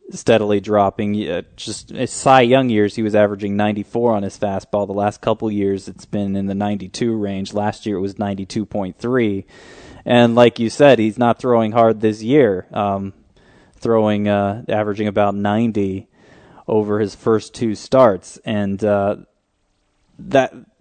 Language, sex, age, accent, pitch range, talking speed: English, male, 20-39, American, 100-115 Hz, 155 wpm